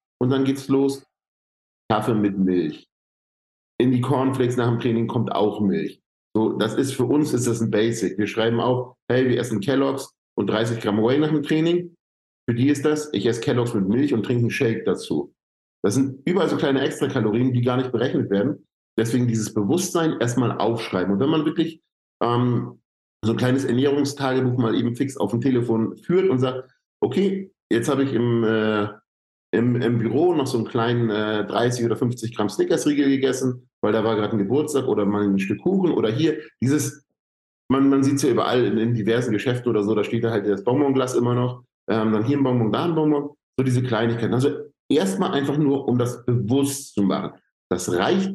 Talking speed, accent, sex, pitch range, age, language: 205 wpm, German, male, 110-135 Hz, 50-69, English